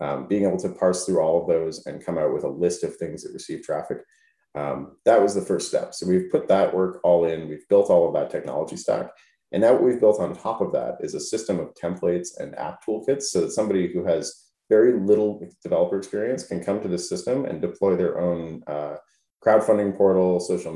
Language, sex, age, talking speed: English, male, 30-49, 230 wpm